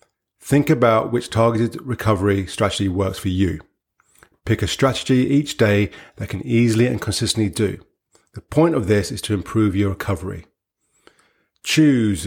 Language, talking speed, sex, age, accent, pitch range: English, 145 wpm, male, 30-49, British, 100-125 Hz